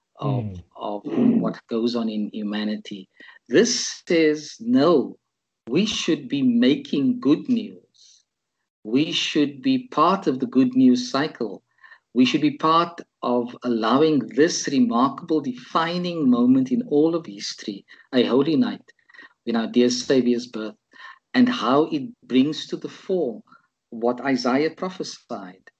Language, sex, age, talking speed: English, male, 50-69, 135 wpm